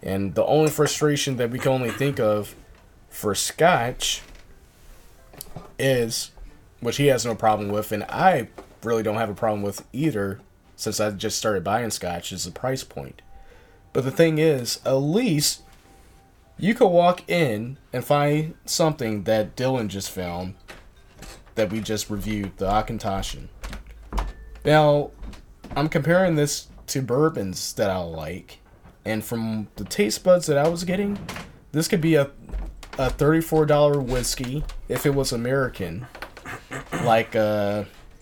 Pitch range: 95-140 Hz